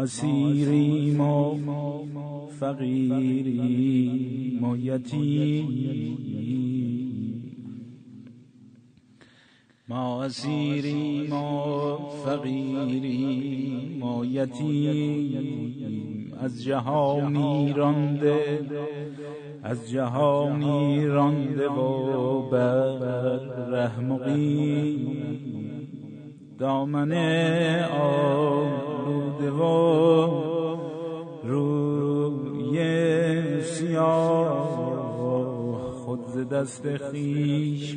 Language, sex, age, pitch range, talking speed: Persian, male, 50-69, 130-150 Hz, 35 wpm